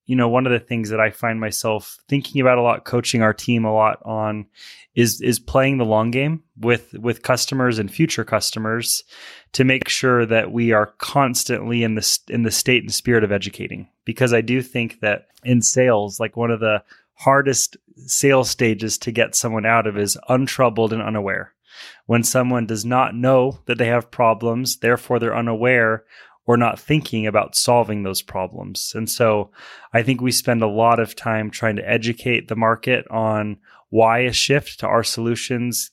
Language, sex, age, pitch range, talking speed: English, male, 20-39, 115-130 Hz, 185 wpm